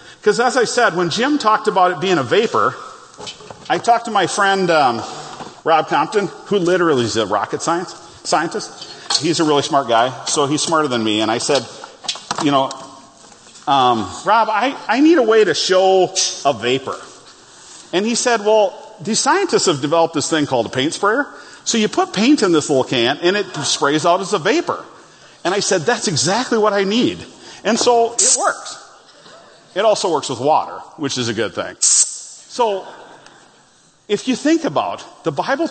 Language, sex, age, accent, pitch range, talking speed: English, male, 40-59, American, 140-220 Hz, 185 wpm